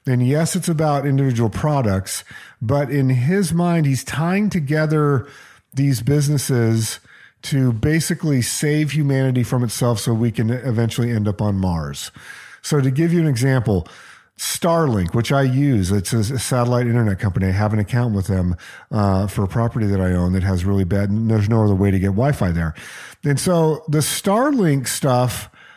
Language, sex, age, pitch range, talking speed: English, male, 50-69, 115-155 Hz, 175 wpm